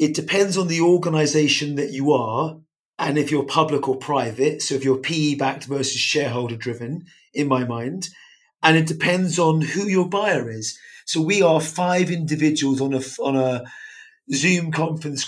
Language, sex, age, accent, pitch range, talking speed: English, male, 30-49, British, 140-170 Hz, 170 wpm